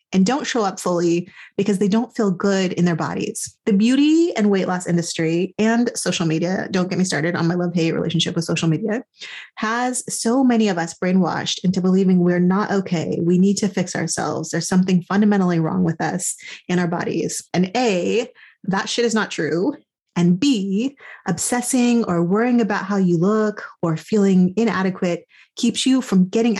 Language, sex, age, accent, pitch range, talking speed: English, female, 30-49, American, 175-215 Hz, 185 wpm